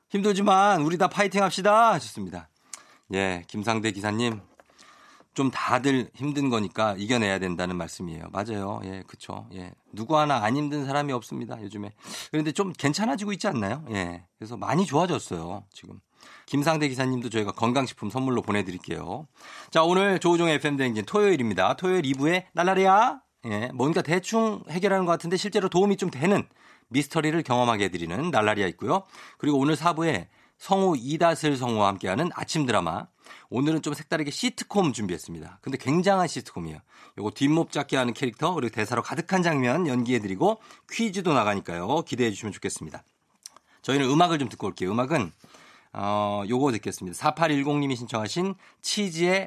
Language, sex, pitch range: Korean, male, 105-170 Hz